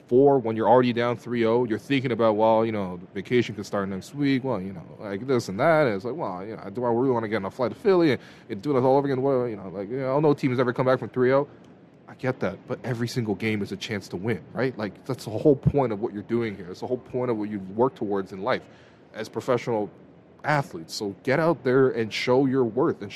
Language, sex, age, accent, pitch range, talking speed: English, male, 20-39, American, 110-165 Hz, 275 wpm